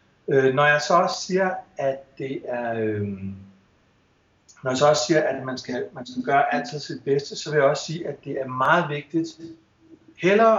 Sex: male